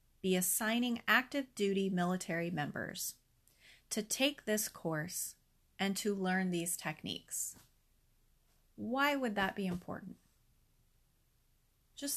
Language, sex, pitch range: English, female, 175-235 Hz